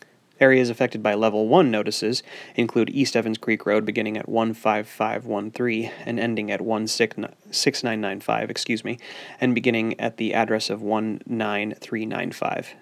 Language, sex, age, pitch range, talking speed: English, male, 30-49, 105-120 Hz, 115 wpm